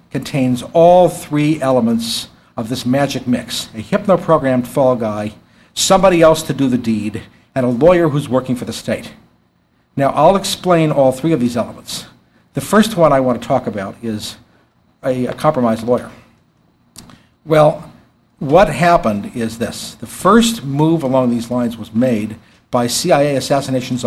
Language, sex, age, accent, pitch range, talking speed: English, male, 60-79, American, 115-155 Hz, 155 wpm